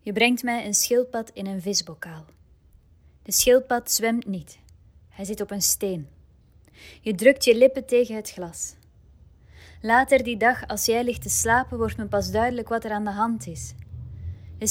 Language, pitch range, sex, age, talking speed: Dutch, 170-240 Hz, female, 20-39, 175 wpm